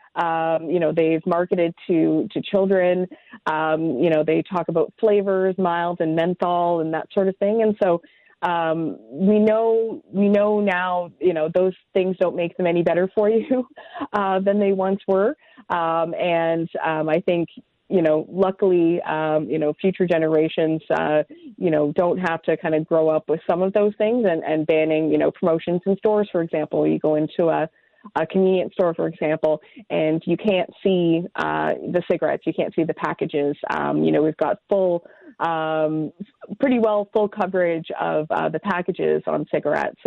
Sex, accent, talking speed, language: female, American, 185 wpm, English